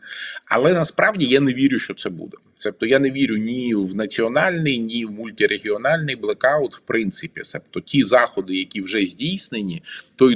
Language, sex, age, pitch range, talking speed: Ukrainian, male, 20-39, 100-135 Hz, 160 wpm